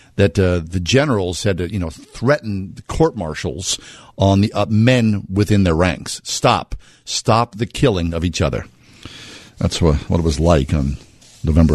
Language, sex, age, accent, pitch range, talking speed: English, male, 50-69, American, 85-115 Hz, 170 wpm